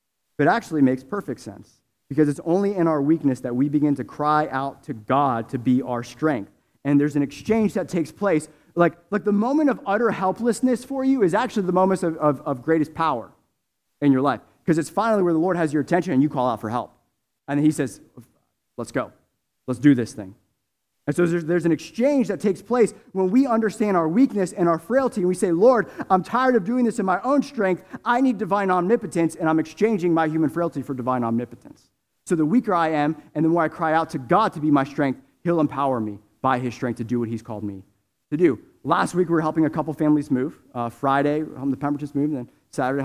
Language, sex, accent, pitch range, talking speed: English, male, American, 135-185 Hz, 235 wpm